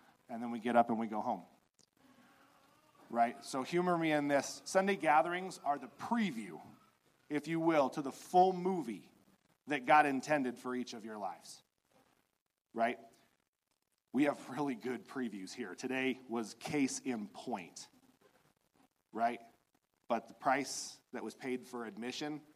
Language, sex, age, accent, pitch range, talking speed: English, male, 40-59, American, 120-155 Hz, 150 wpm